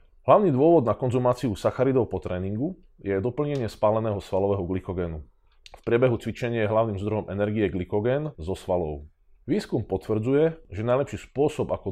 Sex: male